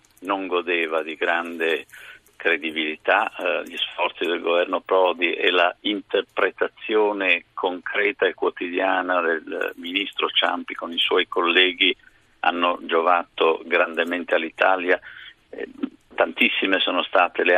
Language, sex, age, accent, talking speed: Italian, male, 50-69, native, 115 wpm